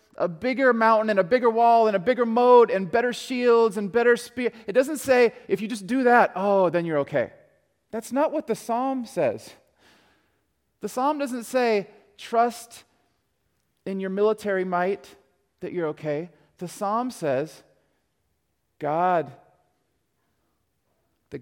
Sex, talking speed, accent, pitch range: male, 145 wpm, American, 145-200 Hz